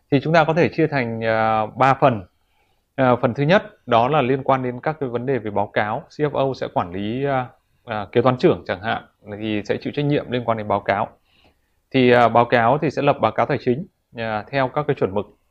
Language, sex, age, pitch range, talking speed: Vietnamese, male, 20-39, 110-140 Hz, 245 wpm